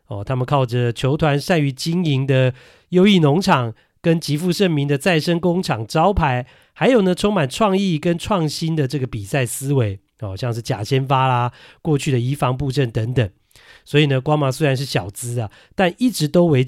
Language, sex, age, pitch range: Chinese, male, 40-59, 125-175 Hz